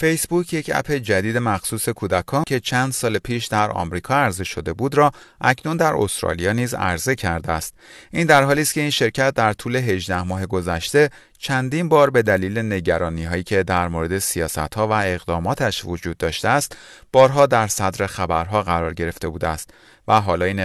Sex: male